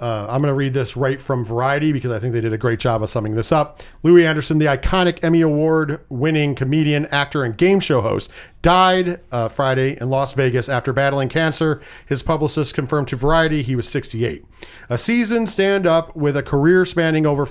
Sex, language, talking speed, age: male, English, 200 wpm, 40-59